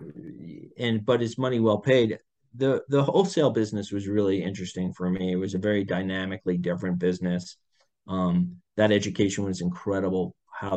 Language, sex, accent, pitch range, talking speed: English, male, American, 95-115 Hz, 155 wpm